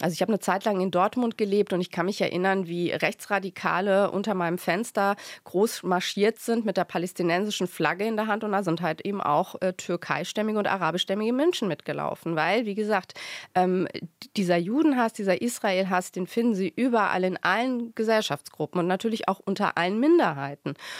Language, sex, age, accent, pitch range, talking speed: German, female, 30-49, German, 175-215 Hz, 175 wpm